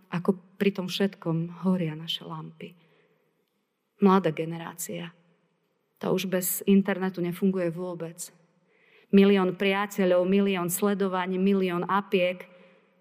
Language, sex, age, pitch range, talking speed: Slovak, female, 30-49, 180-205 Hz, 95 wpm